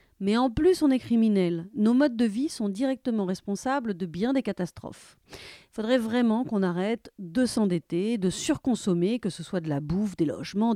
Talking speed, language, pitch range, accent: 190 wpm, French, 200-275 Hz, French